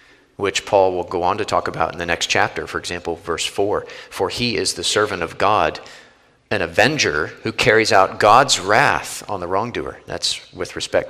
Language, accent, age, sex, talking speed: English, American, 40-59, male, 195 wpm